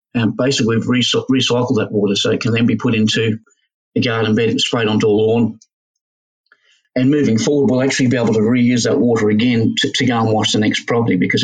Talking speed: 225 wpm